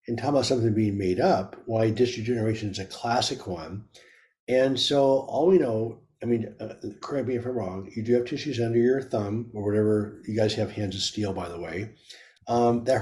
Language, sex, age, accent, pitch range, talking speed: English, male, 50-69, American, 110-135 Hz, 210 wpm